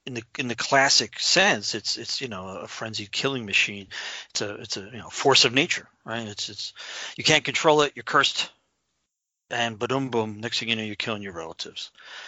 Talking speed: 210 wpm